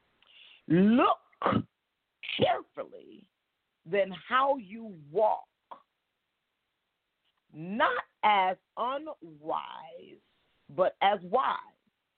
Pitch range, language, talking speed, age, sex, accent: 165-250 Hz, English, 60 wpm, 50-69, female, American